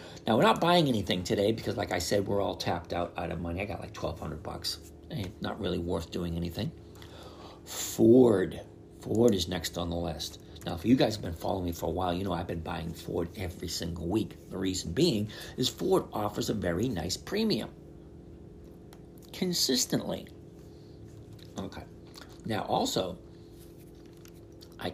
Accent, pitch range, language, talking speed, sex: American, 85-110 Hz, English, 165 wpm, male